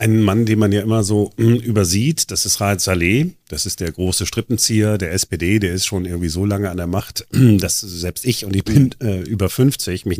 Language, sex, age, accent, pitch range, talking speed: German, male, 40-59, German, 85-105 Hz, 225 wpm